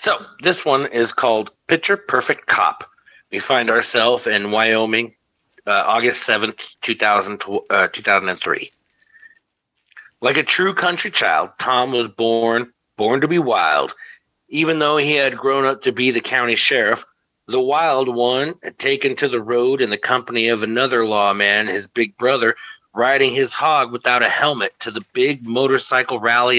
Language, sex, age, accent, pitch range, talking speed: English, male, 40-59, American, 120-175 Hz, 160 wpm